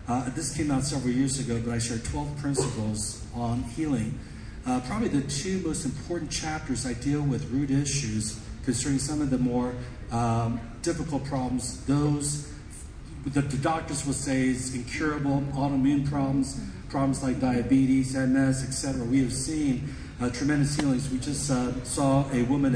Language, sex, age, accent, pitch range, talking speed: English, male, 40-59, American, 125-145 Hz, 160 wpm